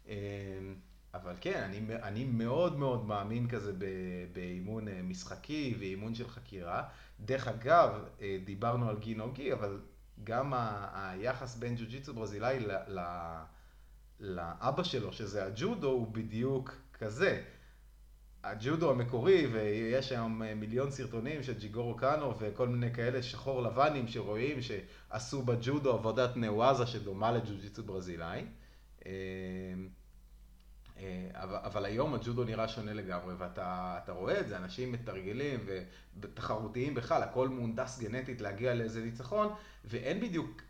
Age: 30-49